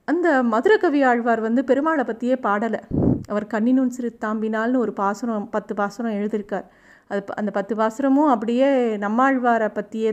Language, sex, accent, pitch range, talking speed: Tamil, female, native, 210-255 Hz, 130 wpm